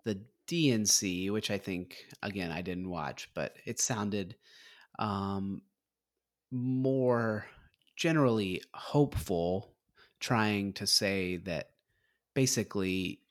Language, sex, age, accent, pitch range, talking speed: English, male, 30-49, American, 90-110 Hz, 95 wpm